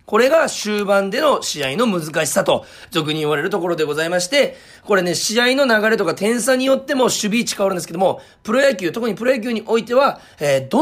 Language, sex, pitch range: Japanese, male, 165-245 Hz